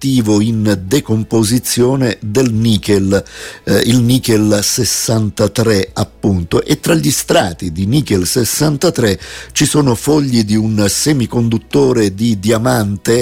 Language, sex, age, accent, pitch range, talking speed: Italian, male, 50-69, native, 100-125 Hz, 110 wpm